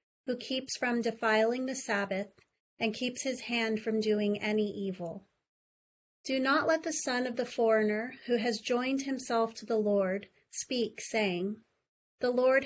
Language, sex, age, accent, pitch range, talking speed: English, female, 30-49, American, 215-250 Hz, 155 wpm